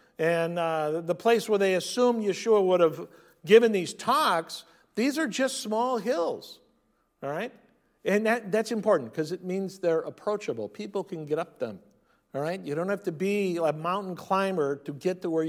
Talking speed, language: 185 wpm, English